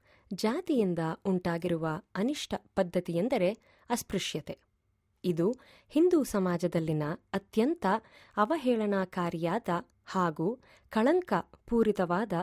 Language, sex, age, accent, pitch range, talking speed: English, female, 20-39, Indian, 170-235 Hz, 65 wpm